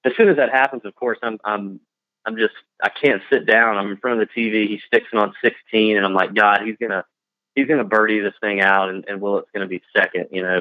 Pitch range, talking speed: 105-130 Hz, 260 wpm